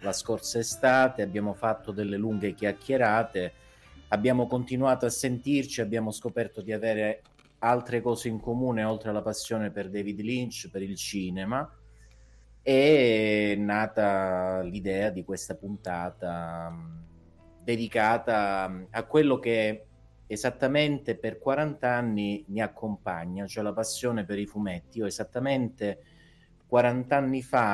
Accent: native